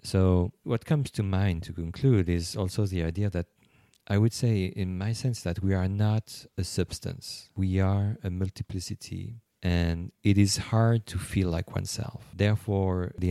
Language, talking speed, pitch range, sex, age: English, 170 wpm, 90-110 Hz, male, 40-59